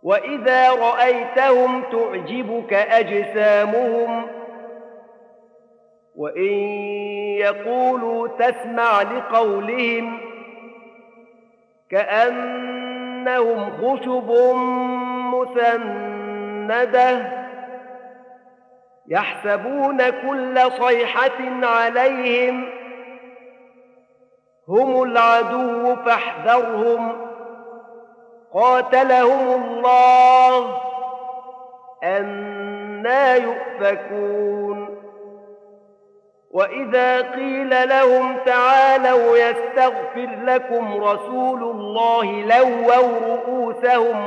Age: 50-69